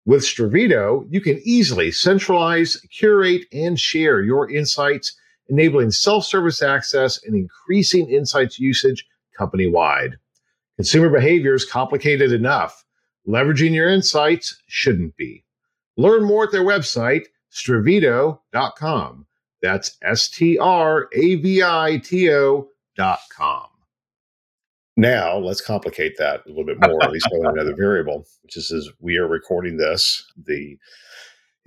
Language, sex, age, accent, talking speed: English, male, 50-69, American, 110 wpm